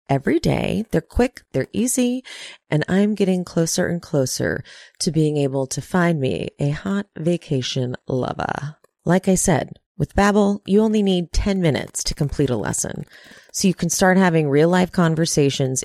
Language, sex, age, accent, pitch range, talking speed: English, female, 30-49, American, 145-190 Hz, 165 wpm